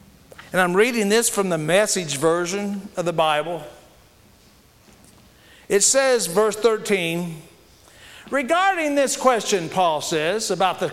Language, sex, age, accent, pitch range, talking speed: English, male, 50-69, American, 190-265 Hz, 120 wpm